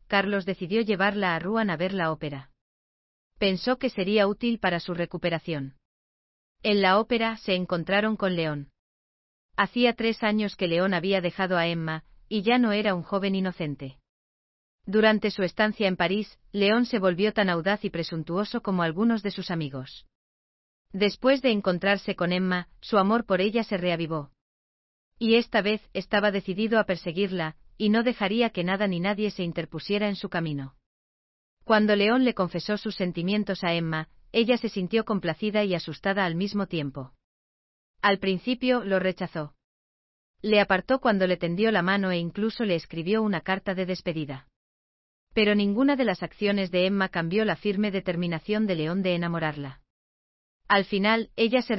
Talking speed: 165 wpm